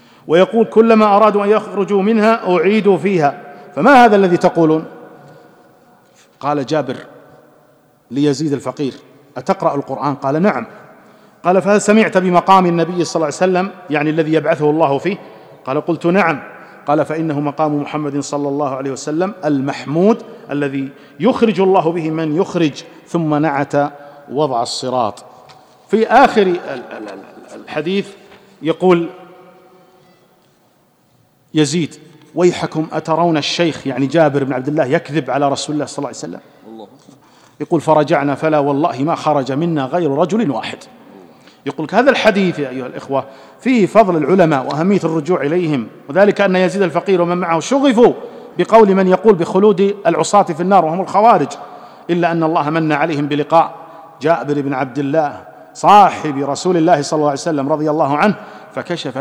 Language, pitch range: Arabic, 145-185 Hz